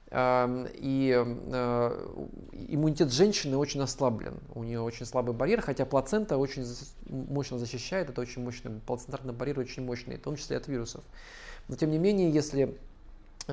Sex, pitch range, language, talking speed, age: male, 125-150 Hz, Russian, 145 wpm, 20-39